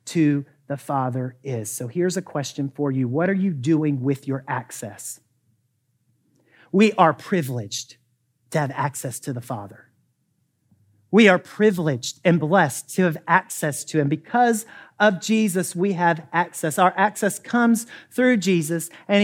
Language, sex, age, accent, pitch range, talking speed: English, male, 40-59, American, 150-225 Hz, 150 wpm